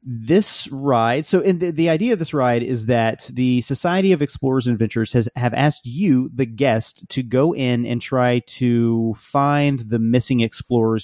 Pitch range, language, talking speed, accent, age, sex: 110-135 Hz, English, 185 wpm, American, 30-49, male